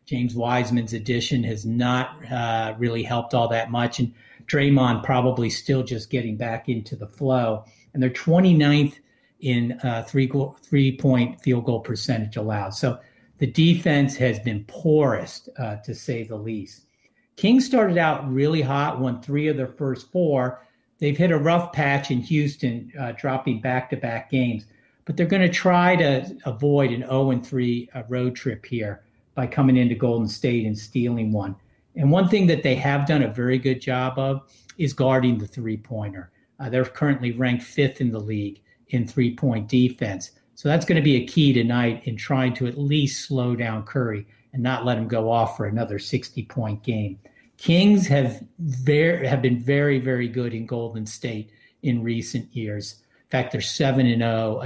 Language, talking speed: English, 170 wpm